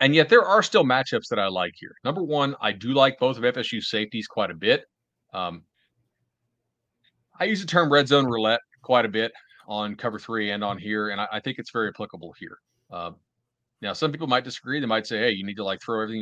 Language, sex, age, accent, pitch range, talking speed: English, male, 30-49, American, 105-125 Hz, 235 wpm